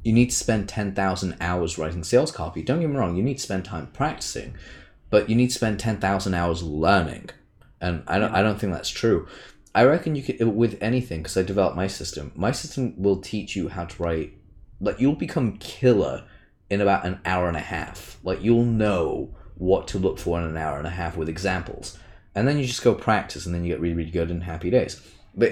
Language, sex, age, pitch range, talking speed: English, male, 20-39, 85-110 Hz, 230 wpm